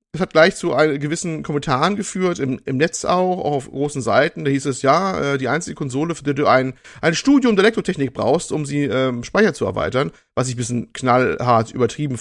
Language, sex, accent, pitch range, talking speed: German, male, German, 115-145 Hz, 215 wpm